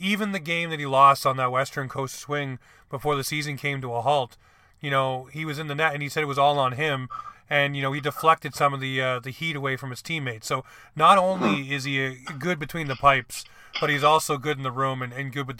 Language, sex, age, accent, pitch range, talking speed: English, male, 30-49, American, 135-160 Hz, 265 wpm